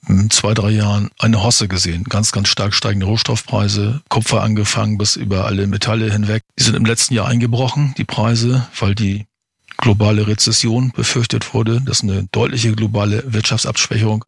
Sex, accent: male, German